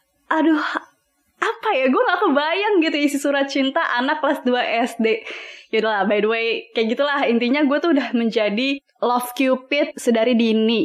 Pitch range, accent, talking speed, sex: 230-315 Hz, native, 165 wpm, female